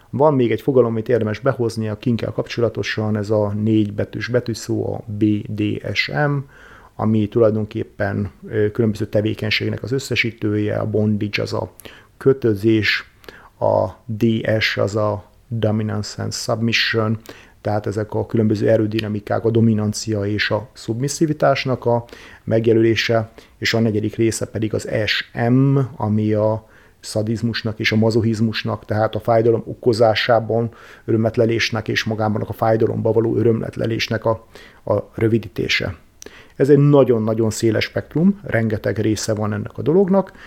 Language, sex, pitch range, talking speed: Hungarian, male, 110-120 Hz, 130 wpm